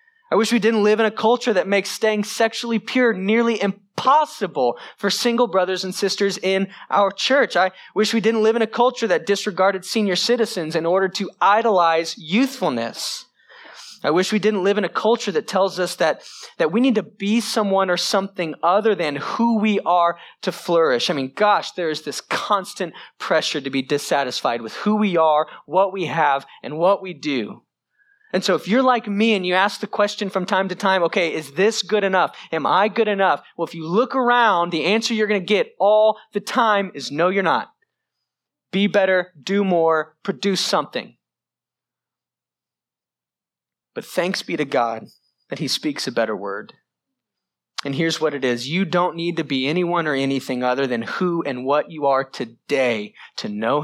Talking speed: 190 wpm